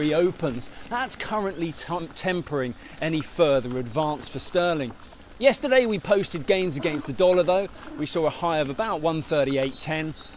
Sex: male